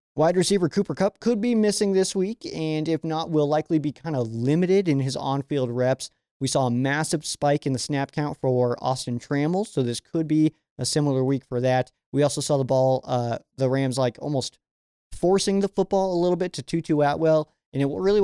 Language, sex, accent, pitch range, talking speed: English, male, American, 125-160 Hz, 220 wpm